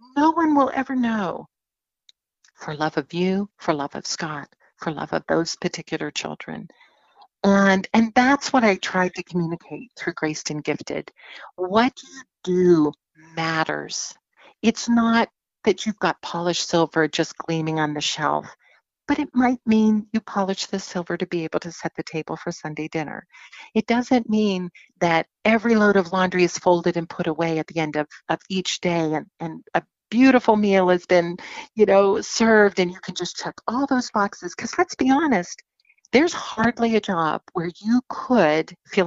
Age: 50-69